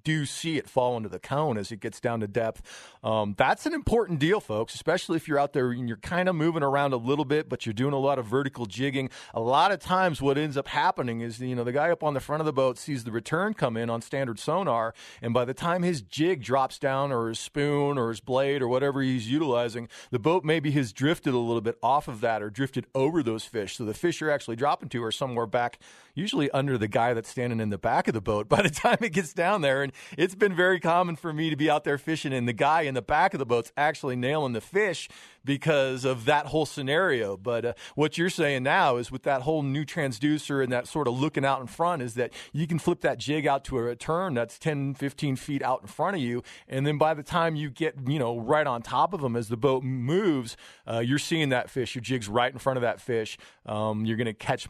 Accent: American